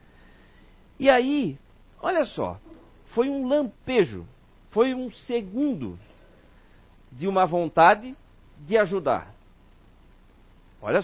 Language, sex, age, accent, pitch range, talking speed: Portuguese, male, 50-69, Brazilian, 150-235 Hz, 85 wpm